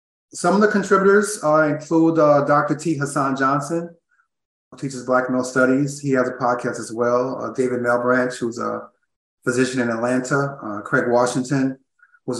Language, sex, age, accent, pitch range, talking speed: English, male, 30-49, American, 125-145 Hz, 165 wpm